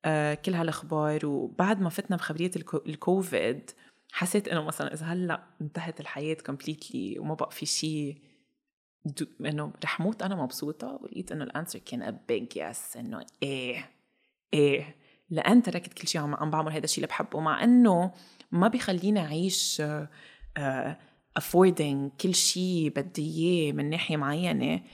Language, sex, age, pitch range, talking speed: Arabic, female, 20-39, 150-190 Hz, 145 wpm